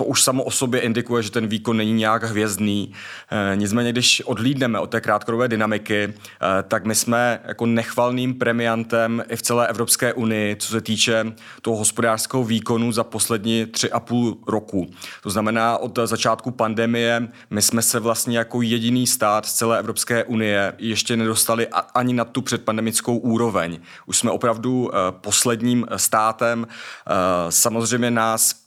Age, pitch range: 30-49, 105-115 Hz